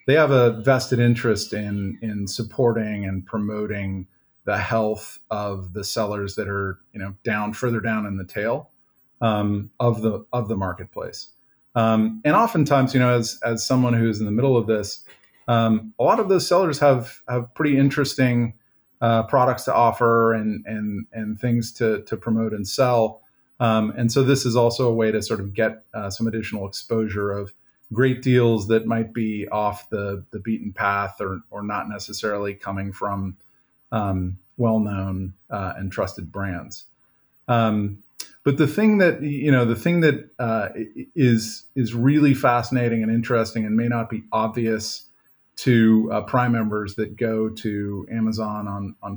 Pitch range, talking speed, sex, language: 105-120 Hz, 170 wpm, male, English